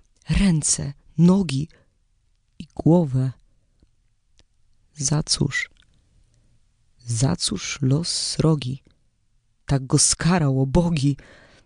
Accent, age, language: native, 20-39, Polish